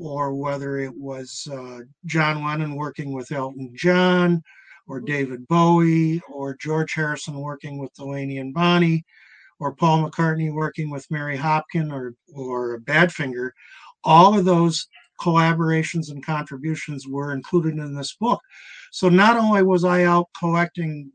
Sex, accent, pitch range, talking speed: male, American, 150-180 Hz, 140 wpm